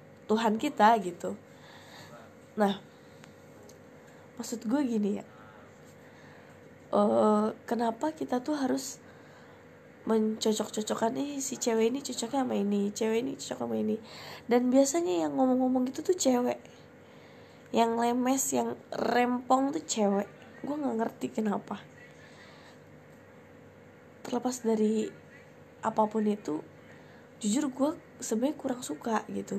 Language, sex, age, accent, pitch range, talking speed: Indonesian, female, 10-29, native, 215-260 Hz, 110 wpm